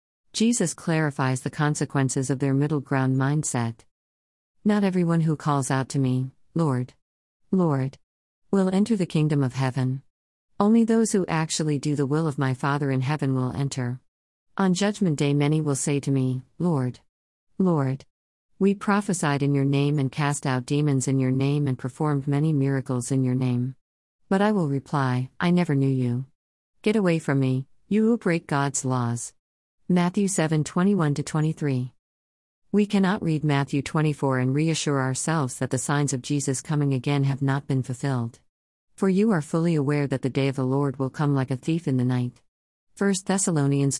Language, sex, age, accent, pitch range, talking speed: English, female, 50-69, American, 130-160 Hz, 180 wpm